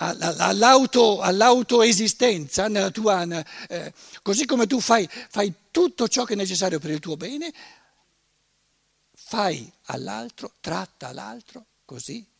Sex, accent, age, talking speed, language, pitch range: male, native, 60-79, 115 wpm, Italian, 150-230 Hz